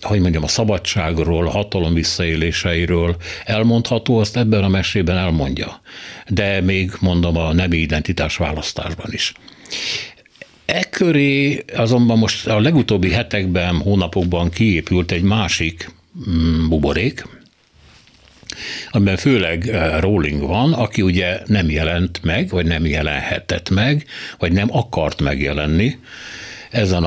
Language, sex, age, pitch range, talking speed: Hungarian, male, 60-79, 85-105 Hz, 115 wpm